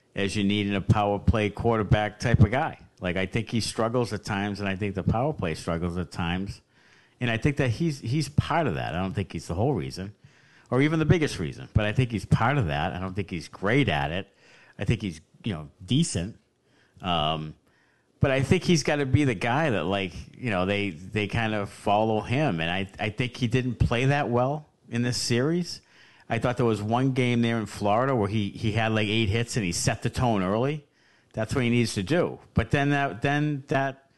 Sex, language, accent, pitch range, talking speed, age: male, English, American, 100-130 Hz, 230 wpm, 50-69